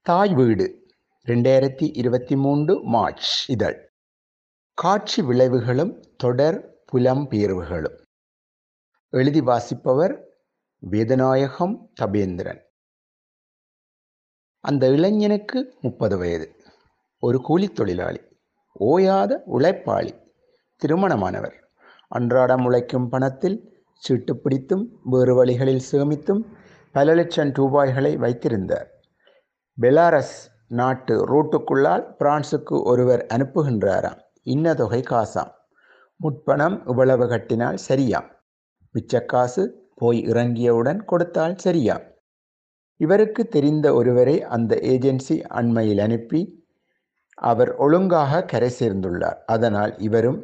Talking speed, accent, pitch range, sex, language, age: 75 wpm, native, 115-155 Hz, male, Tamil, 60-79